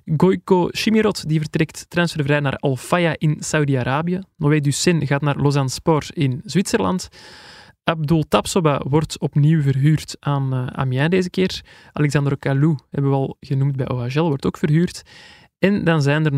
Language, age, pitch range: Dutch, 20-39, 140-165 Hz